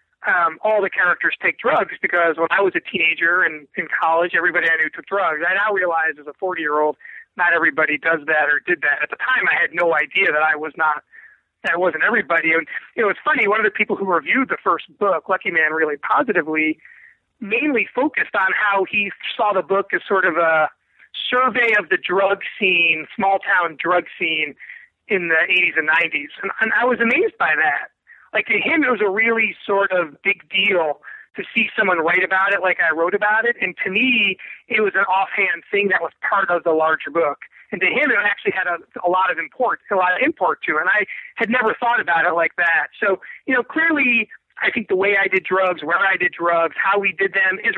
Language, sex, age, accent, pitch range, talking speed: English, male, 30-49, American, 170-220 Hz, 225 wpm